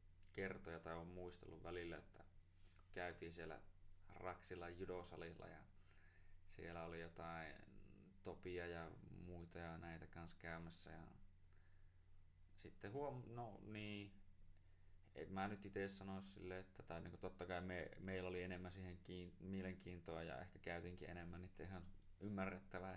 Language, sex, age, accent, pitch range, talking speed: Finnish, male, 20-39, native, 85-95 Hz, 125 wpm